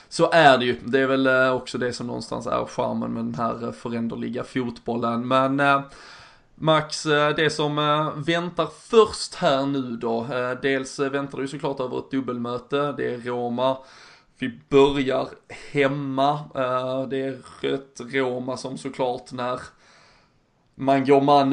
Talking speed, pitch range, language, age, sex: 140 wpm, 125-140 Hz, Swedish, 20-39, male